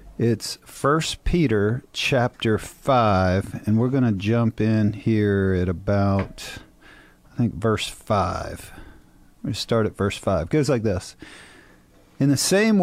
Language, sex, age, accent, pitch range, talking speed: English, male, 40-59, American, 105-140 Hz, 145 wpm